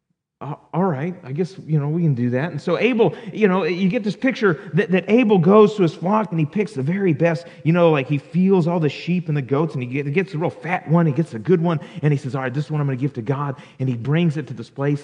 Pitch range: 130-180 Hz